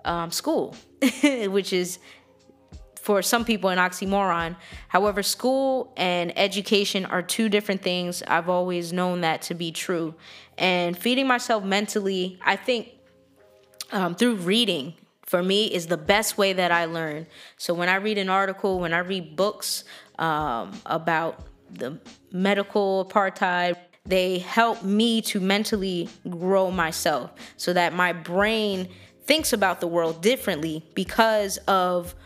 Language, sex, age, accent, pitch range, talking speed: English, female, 20-39, American, 175-210 Hz, 140 wpm